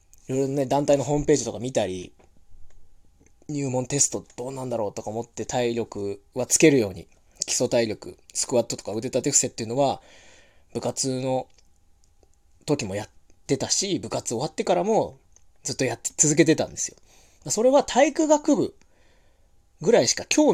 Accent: native